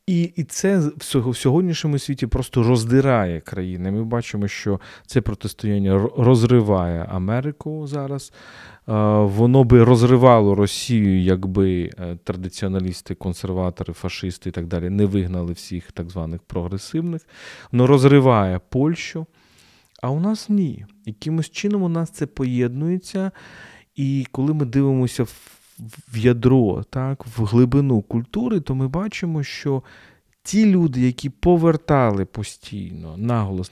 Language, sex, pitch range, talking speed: Ukrainian, male, 100-135 Hz, 120 wpm